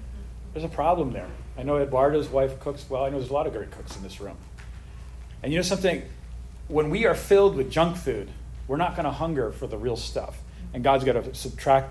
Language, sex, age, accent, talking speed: English, male, 40-59, American, 230 wpm